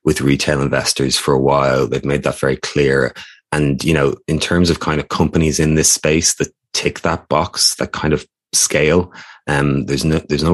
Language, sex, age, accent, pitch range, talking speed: English, male, 30-49, Irish, 70-85 Hz, 205 wpm